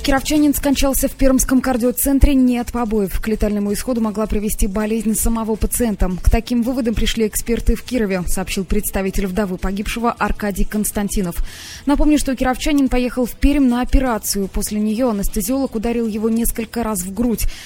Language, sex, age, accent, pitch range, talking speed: Russian, female, 20-39, native, 195-295 Hz, 155 wpm